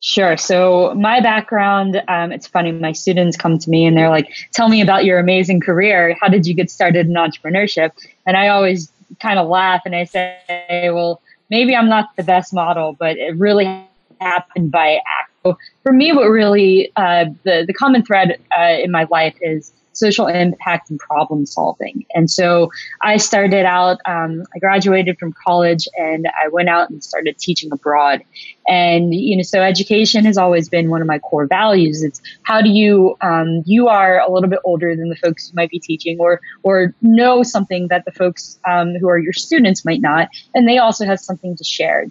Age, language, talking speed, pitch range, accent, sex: 20-39, English, 200 wpm, 170-200 Hz, American, female